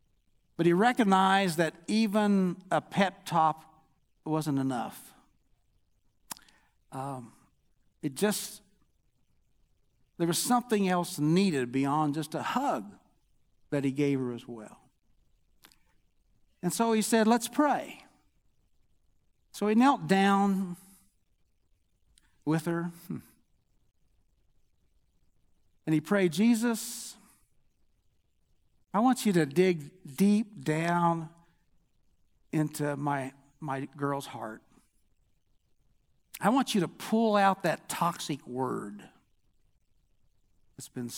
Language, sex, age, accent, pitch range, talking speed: English, male, 60-79, American, 135-195 Hz, 100 wpm